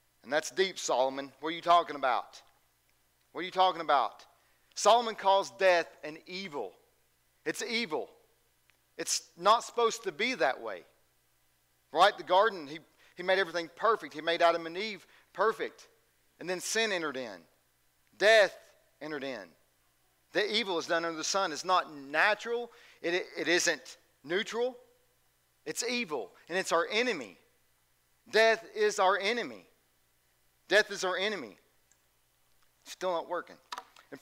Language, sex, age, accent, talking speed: English, male, 40-59, American, 145 wpm